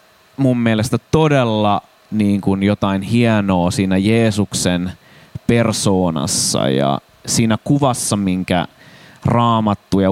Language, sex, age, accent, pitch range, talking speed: Finnish, male, 20-39, native, 95-115 Hz, 95 wpm